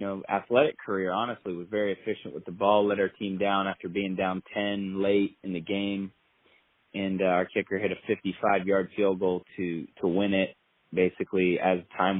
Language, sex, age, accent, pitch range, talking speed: English, male, 30-49, American, 95-115 Hz, 185 wpm